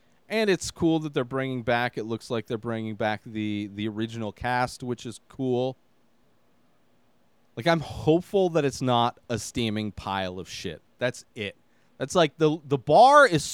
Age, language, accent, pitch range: 30-49, English, American, 110-145 Hz